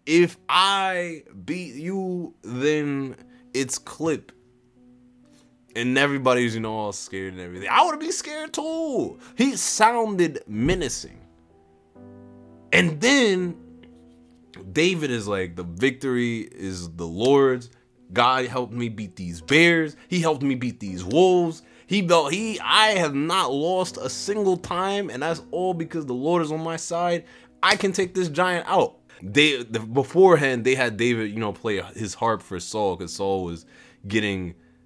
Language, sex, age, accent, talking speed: English, male, 20-39, American, 150 wpm